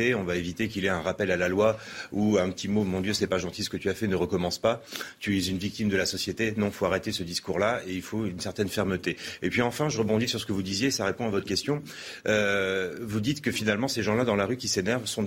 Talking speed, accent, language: 295 wpm, French, French